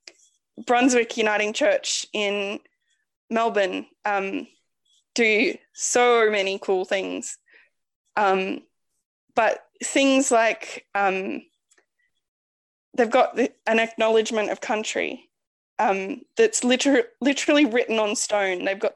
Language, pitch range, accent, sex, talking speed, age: English, 205-250 Hz, Australian, female, 100 wpm, 10-29